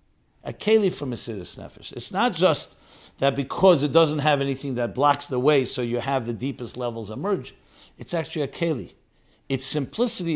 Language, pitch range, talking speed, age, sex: English, 120-155 Hz, 175 wpm, 50-69, male